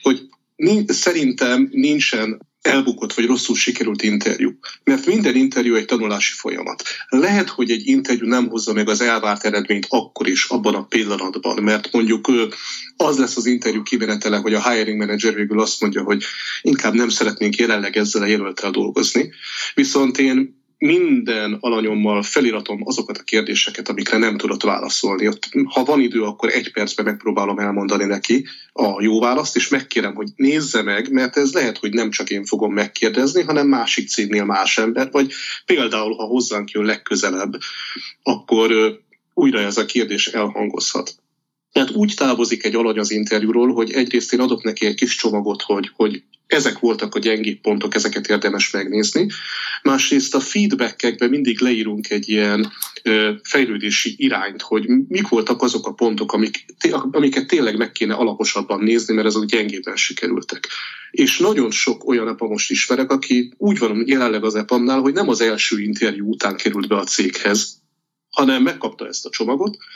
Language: Hungarian